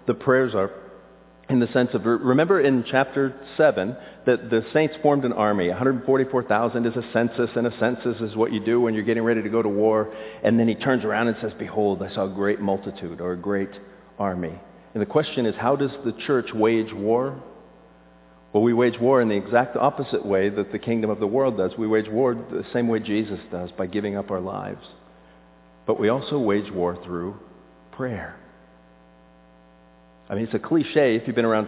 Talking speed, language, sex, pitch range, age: 205 wpm, English, male, 95-120 Hz, 50-69